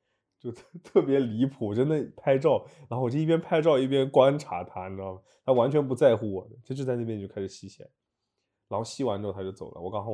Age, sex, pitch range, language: 20-39, male, 100-130 Hz, Chinese